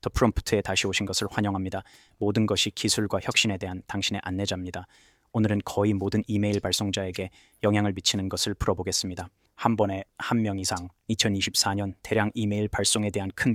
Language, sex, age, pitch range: Korean, male, 20-39, 95-105 Hz